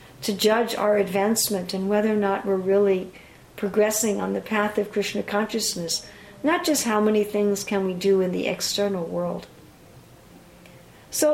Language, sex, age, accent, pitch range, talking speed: English, female, 60-79, American, 195-230 Hz, 160 wpm